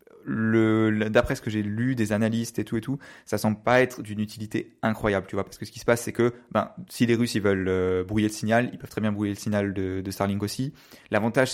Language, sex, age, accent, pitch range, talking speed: French, male, 20-39, French, 105-120 Hz, 270 wpm